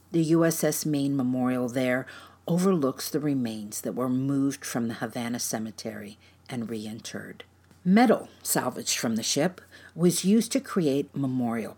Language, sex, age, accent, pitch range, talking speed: English, female, 50-69, American, 115-160 Hz, 140 wpm